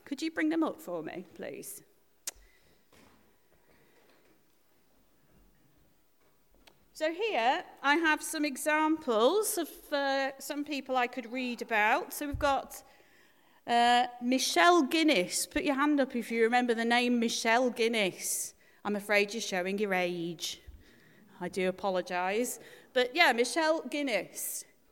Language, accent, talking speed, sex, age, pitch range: English, British, 125 wpm, female, 40-59, 205-315 Hz